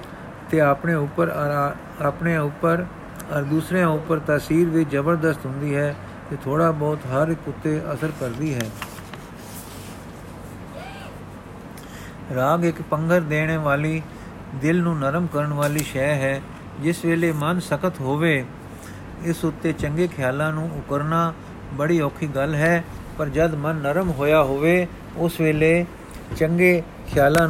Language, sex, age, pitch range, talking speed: Punjabi, male, 50-69, 135-165 Hz, 130 wpm